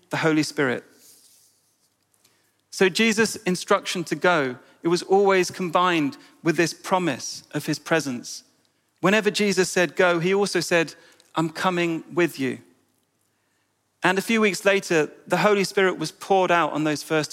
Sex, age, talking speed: male, 40-59, 150 wpm